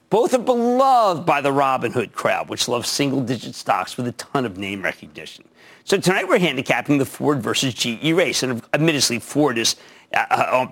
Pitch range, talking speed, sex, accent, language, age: 130-210 Hz, 180 wpm, male, American, English, 50-69